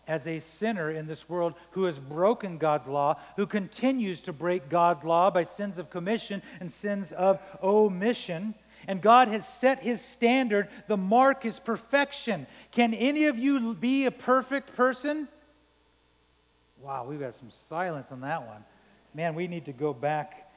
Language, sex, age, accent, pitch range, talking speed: English, male, 40-59, American, 145-240 Hz, 165 wpm